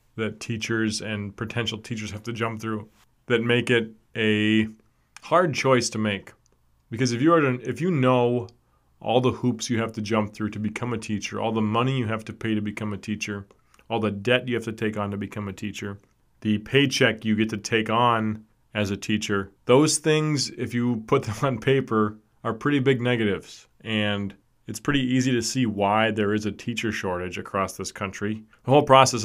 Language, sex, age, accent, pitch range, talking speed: English, male, 30-49, American, 105-125 Hz, 205 wpm